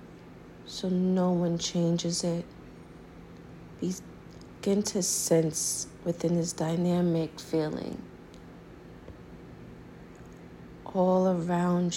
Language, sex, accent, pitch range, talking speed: English, female, American, 155-175 Hz, 70 wpm